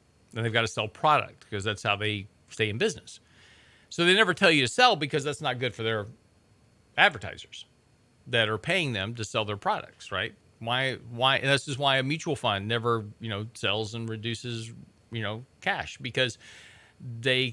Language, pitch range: English, 110-145 Hz